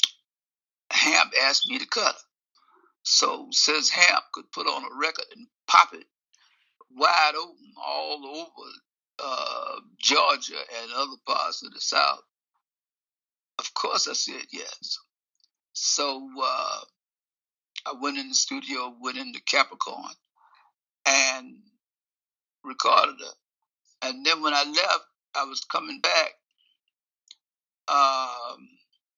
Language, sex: English, male